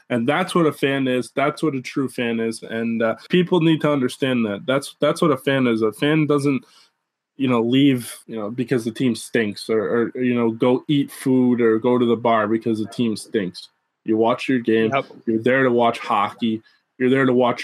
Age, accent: 20-39, American